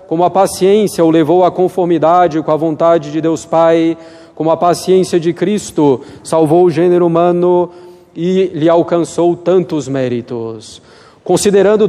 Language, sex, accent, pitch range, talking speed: Portuguese, male, Brazilian, 165-185 Hz, 140 wpm